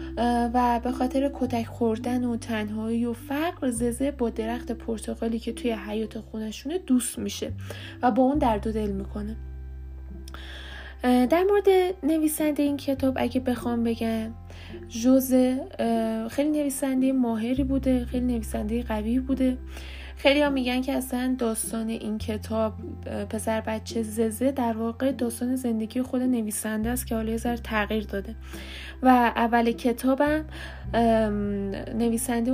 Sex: female